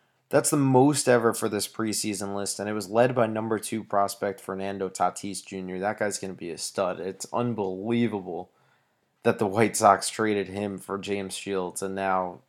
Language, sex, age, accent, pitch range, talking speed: English, male, 20-39, American, 100-120 Hz, 185 wpm